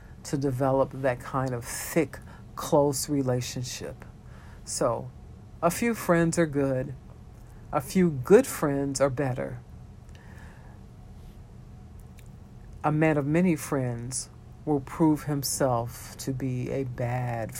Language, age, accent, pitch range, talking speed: English, 50-69, American, 125-155 Hz, 110 wpm